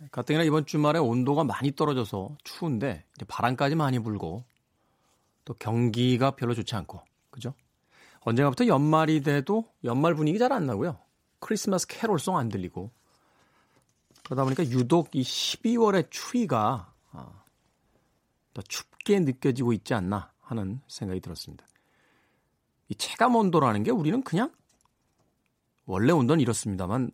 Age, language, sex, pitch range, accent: 40-59, Korean, male, 105-155 Hz, native